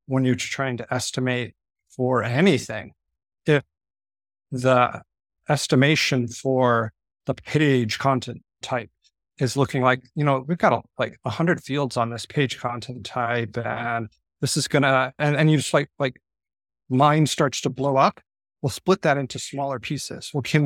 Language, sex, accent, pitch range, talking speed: English, male, American, 115-140 Hz, 160 wpm